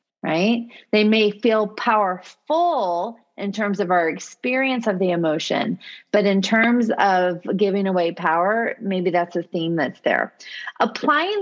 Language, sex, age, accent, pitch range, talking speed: English, female, 40-59, American, 200-255 Hz, 140 wpm